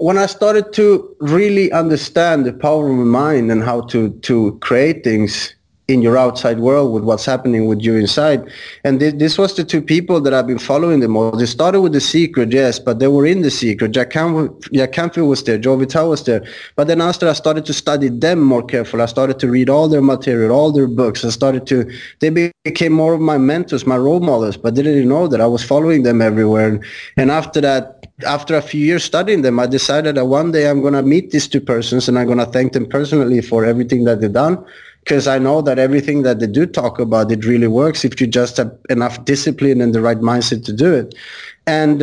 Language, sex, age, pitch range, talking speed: English, male, 30-49, 120-150 Hz, 235 wpm